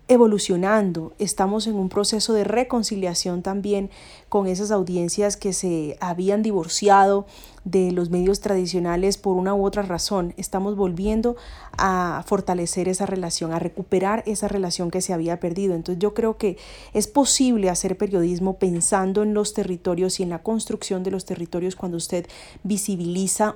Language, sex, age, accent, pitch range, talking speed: Spanish, female, 30-49, Colombian, 180-205 Hz, 155 wpm